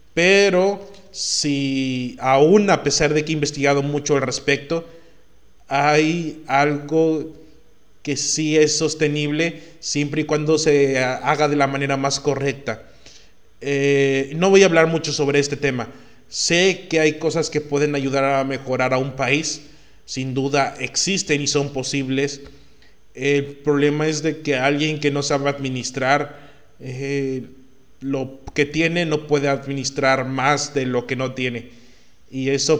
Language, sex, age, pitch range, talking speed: Spanish, male, 30-49, 135-150 Hz, 145 wpm